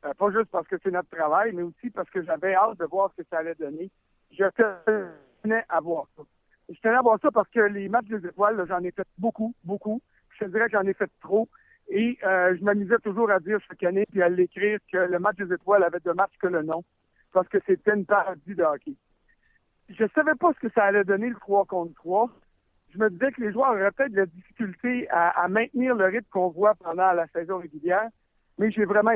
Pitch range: 180-225 Hz